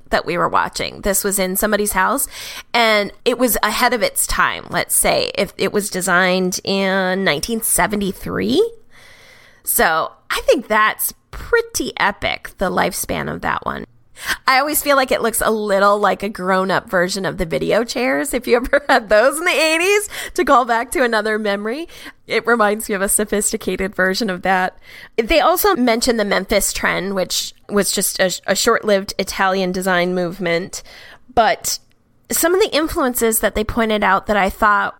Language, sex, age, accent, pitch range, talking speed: English, female, 20-39, American, 195-250 Hz, 175 wpm